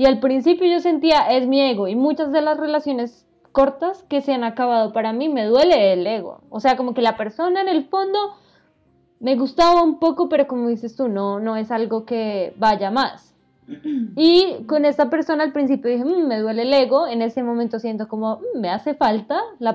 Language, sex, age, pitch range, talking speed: Spanish, female, 10-29, 225-275 Hz, 215 wpm